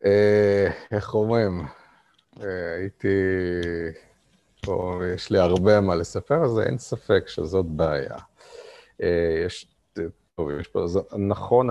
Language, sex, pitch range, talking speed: Hebrew, male, 90-125 Hz, 75 wpm